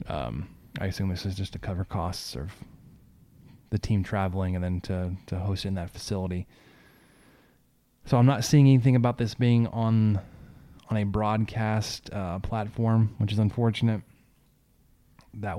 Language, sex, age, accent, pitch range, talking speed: English, male, 20-39, American, 95-115 Hz, 150 wpm